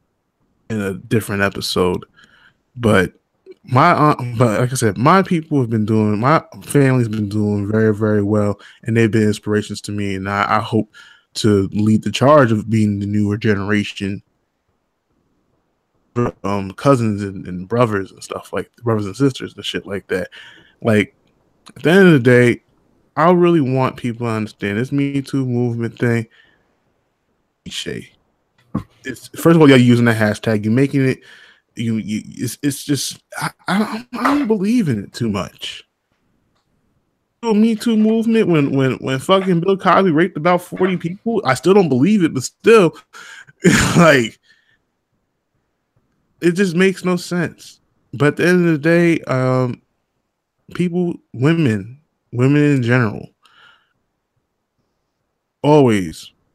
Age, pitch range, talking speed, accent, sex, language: 20-39, 110-165 Hz, 150 wpm, American, male, English